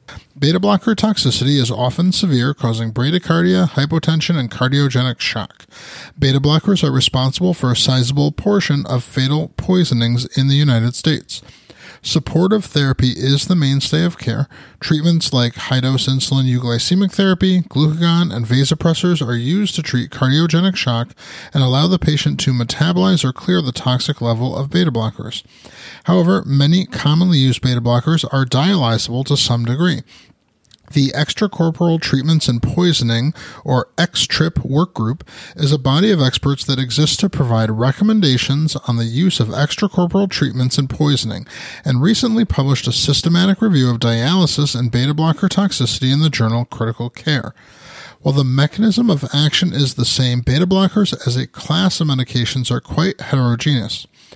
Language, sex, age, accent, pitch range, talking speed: English, male, 30-49, American, 125-170 Hz, 150 wpm